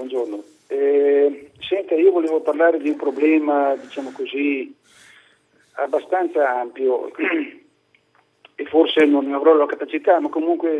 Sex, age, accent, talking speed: male, 50-69, native, 120 wpm